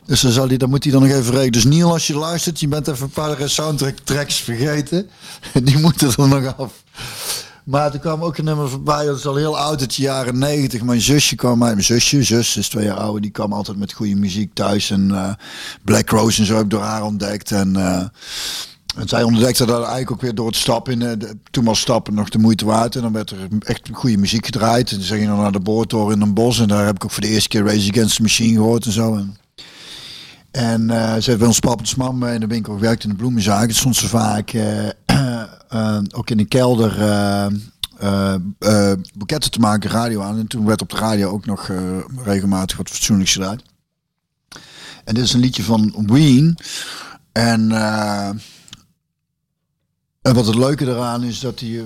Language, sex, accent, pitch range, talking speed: Dutch, male, Dutch, 105-130 Hz, 225 wpm